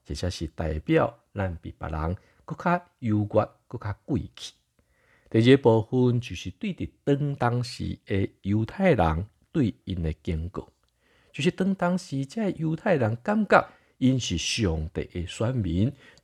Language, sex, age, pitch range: Chinese, male, 60-79, 90-140 Hz